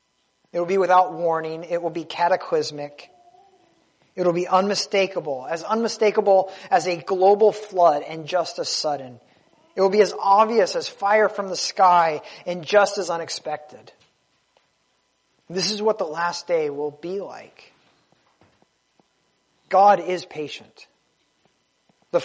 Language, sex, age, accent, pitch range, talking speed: English, male, 30-49, American, 170-205 Hz, 135 wpm